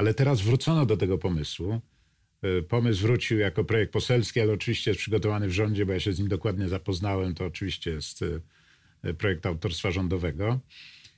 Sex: male